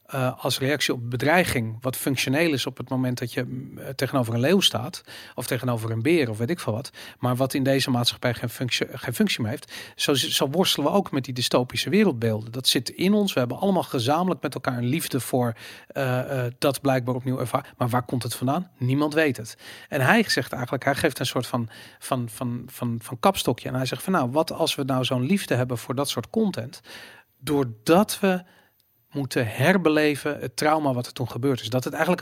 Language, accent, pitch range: Dutch, Dutch, 125-150 Hz